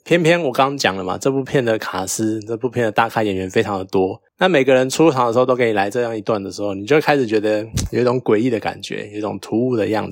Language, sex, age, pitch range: Chinese, male, 20-39, 110-145 Hz